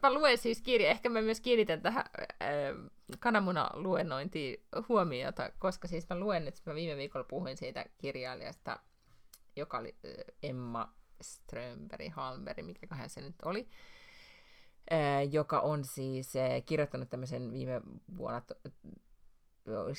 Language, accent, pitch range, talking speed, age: Finnish, native, 125-180 Hz, 130 wpm, 30-49